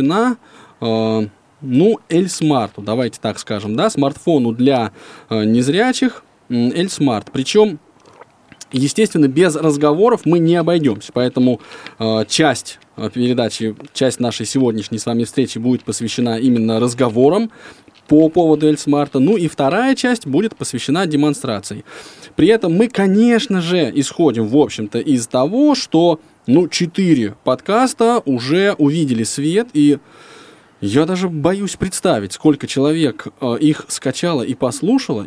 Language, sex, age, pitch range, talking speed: Russian, male, 20-39, 120-165 Hz, 125 wpm